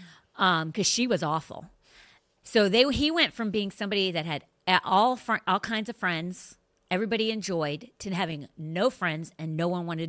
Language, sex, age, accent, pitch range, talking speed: English, female, 40-59, American, 160-220 Hz, 180 wpm